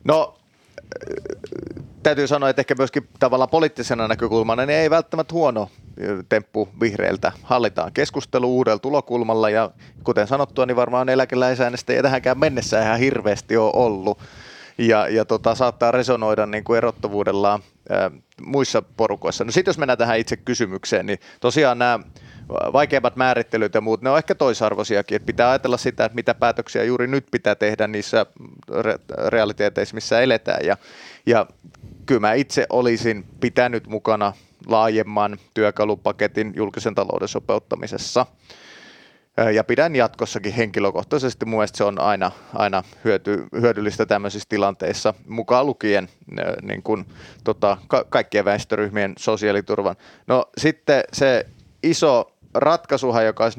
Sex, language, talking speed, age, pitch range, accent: male, Finnish, 125 wpm, 30-49, 105-130 Hz, native